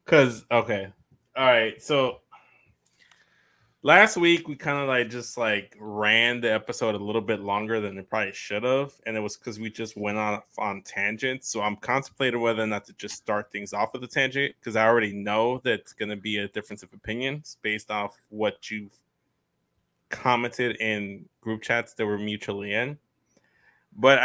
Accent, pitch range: American, 110-130 Hz